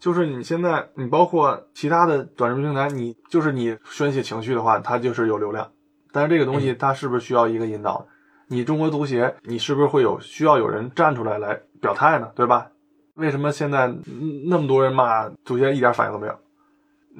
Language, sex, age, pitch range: Chinese, male, 20-39, 120-160 Hz